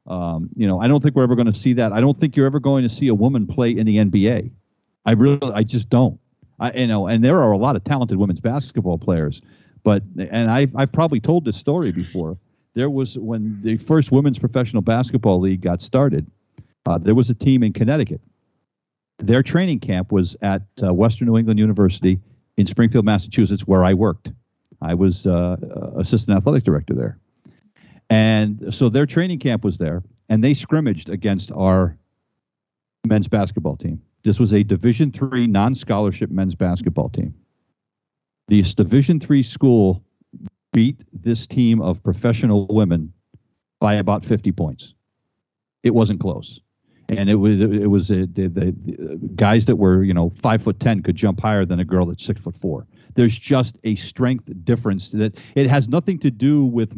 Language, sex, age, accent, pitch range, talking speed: English, male, 50-69, American, 95-125 Hz, 185 wpm